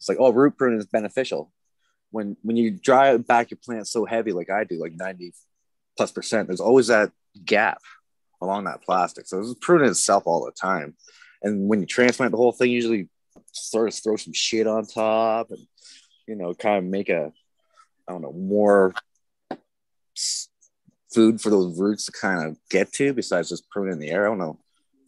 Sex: male